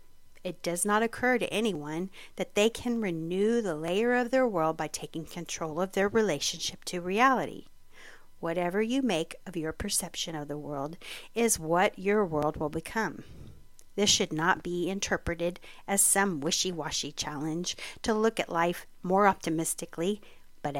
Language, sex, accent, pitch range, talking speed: English, female, American, 160-210 Hz, 155 wpm